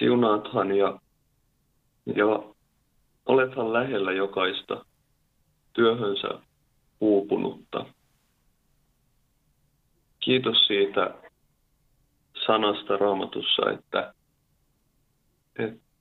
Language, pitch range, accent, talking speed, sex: Finnish, 90-120 Hz, native, 50 wpm, male